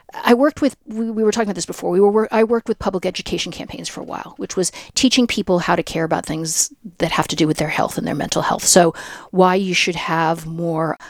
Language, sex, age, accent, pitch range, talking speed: English, female, 50-69, American, 165-205 Hz, 240 wpm